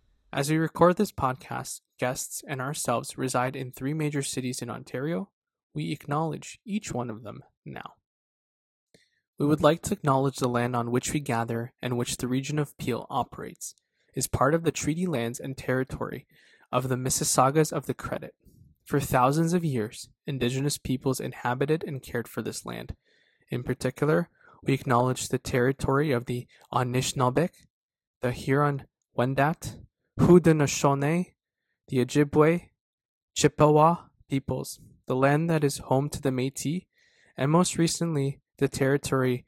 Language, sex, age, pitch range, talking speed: English, male, 20-39, 125-150 Hz, 145 wpm